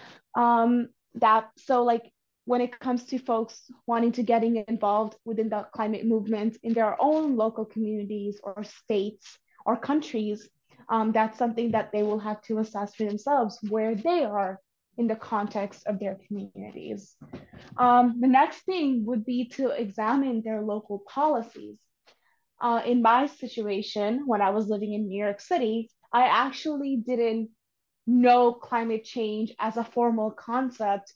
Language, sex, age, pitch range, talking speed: English, female, 20-39, 215-240 Hz, 150 wpm